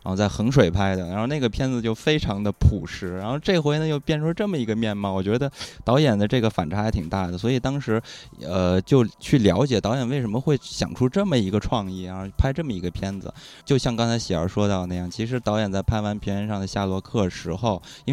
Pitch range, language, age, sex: 95-130 Hz, Chinese, 20-39, male